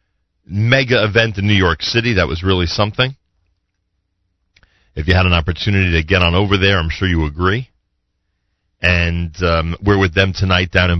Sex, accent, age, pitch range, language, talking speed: male, American, 40-59, 85-110 Hz, English, 175 wpm